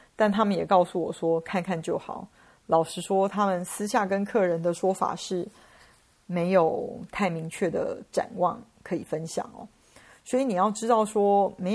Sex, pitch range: female, 180-220 Hz